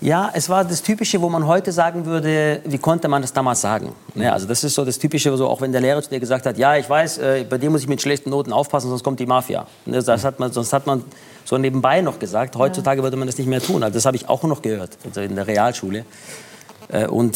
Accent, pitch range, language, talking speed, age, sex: German, 120-150 Hz, German, 265 wpm, 40-59, male